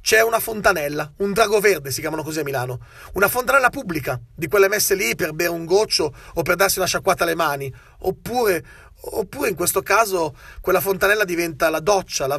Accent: native